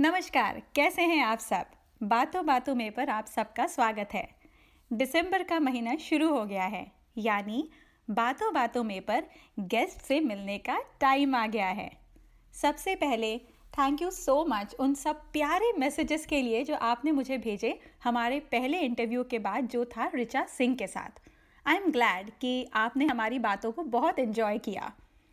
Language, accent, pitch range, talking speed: Hindi, native, 230-305 Hz, 170 wpm